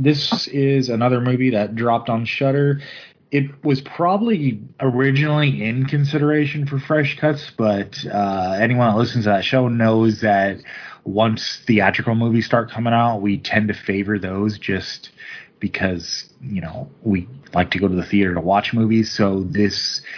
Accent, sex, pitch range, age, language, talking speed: American, male, 105-125 Hz, 20-39, English, 160 wpm